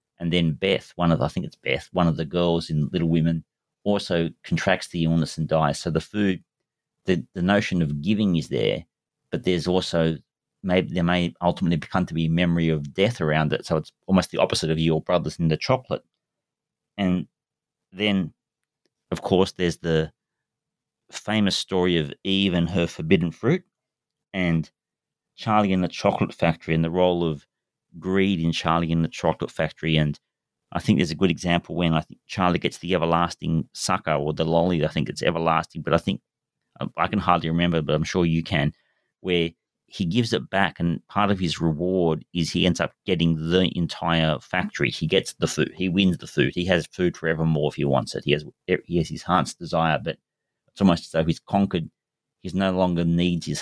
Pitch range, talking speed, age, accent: 80-95 Hz, 200 wpm, 40-59, Australian